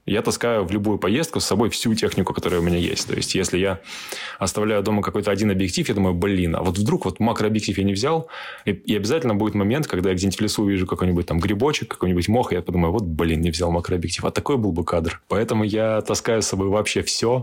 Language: Russian